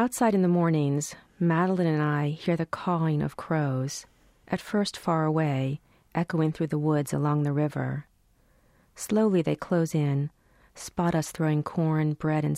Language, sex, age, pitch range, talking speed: English, female, 40-59, 145-175 Hz, 155 wpm